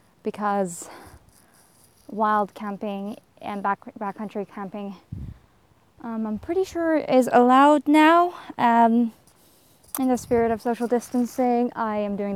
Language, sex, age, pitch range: English, female, 20-39, 200-250 Hz